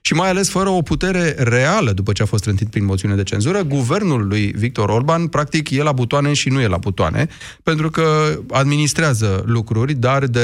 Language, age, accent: Romanian, 30-49, native